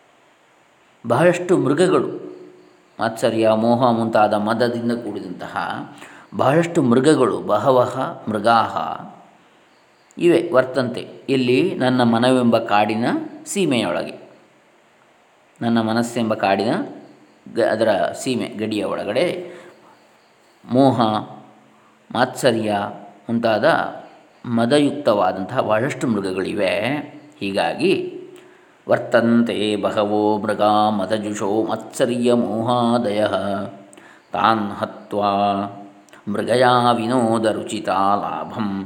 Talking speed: 70 wpm